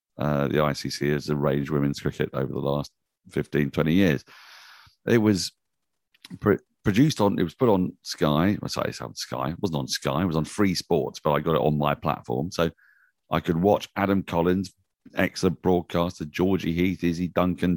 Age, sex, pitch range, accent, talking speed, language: 40-59, male, 75-95 Hz, British, 190 wpm, English